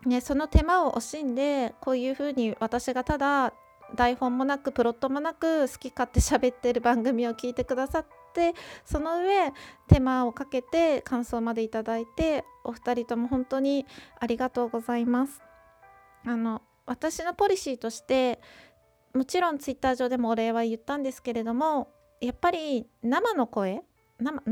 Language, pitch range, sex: Japanese, 230-300 Hz, female